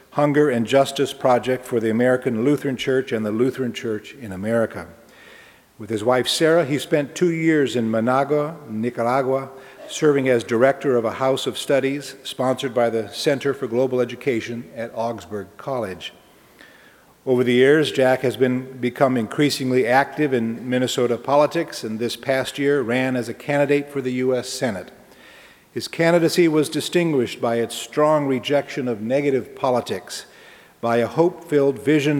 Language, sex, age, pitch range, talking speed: English, male, 50-69, 115-145 Hz, 155 wpm